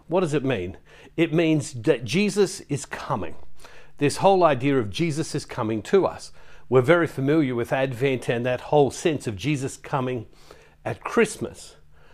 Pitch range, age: 125-165 Hz, 50-69